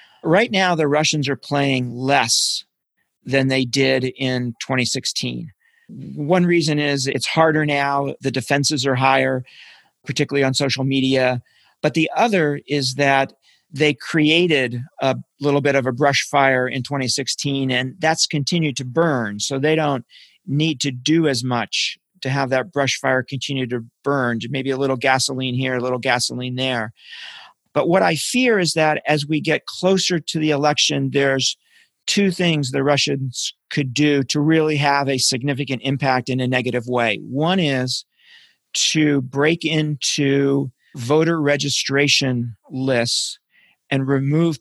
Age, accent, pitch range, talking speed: 40-59, American, 130-150 Hz, 150 wpm